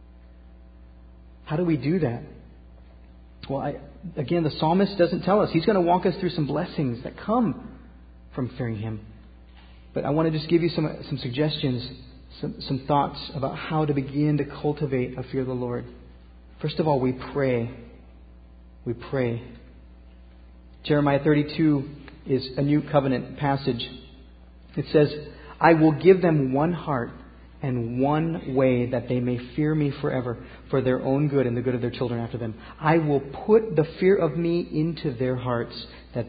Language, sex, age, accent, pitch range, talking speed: English, male, 40-59, American, 120-160 Hz, 170 wpm